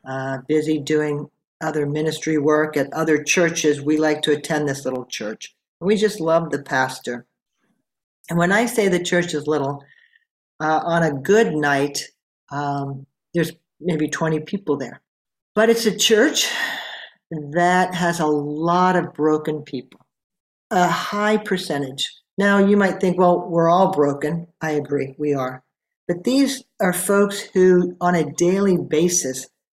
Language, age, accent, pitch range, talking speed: English, 50-69, American, 150-195 Hz, 155 wpm